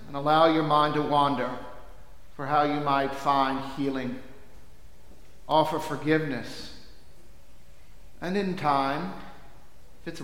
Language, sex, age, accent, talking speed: English, male, 50-69, American, 110 wpm